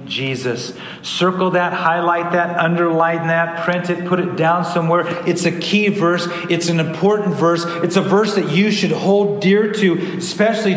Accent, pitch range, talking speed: American, 175-220 Hz, 175 wpm